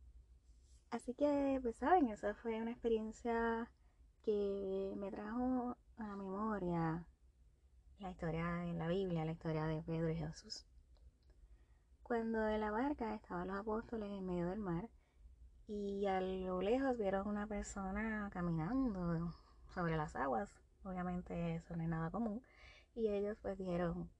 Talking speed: 140 wpm